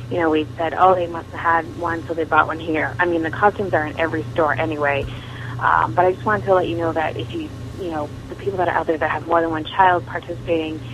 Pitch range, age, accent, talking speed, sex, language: 130-170 Hz, 30-49, American, 280 wpm, female, English